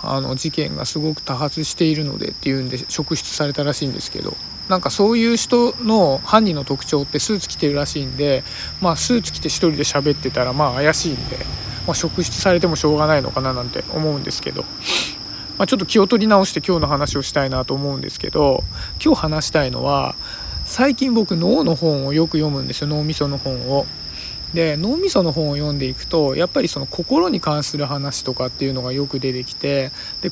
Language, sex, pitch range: Japanese, male, 140-180 Hz